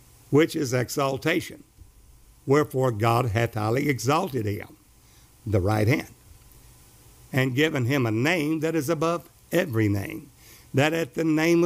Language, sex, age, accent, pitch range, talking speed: English, male, 60-79, American, 110-150 Hz, 135 wpm